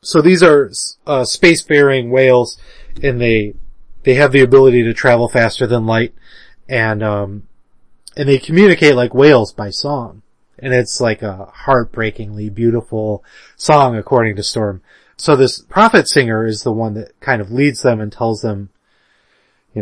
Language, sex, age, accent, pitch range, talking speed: English, male, 30-49, American, 110-135 Hz, 155 wpm